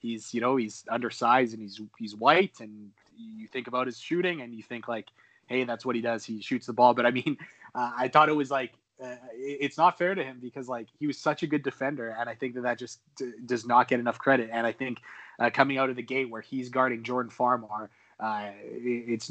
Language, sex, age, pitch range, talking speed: English, male, 20-39, 115-135 Hz, 240 wpm